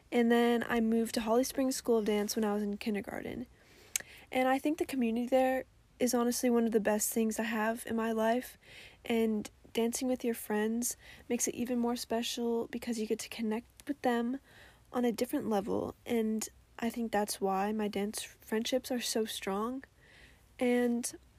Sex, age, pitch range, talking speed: female, 10-29, 220-250 Hz, 185 wpm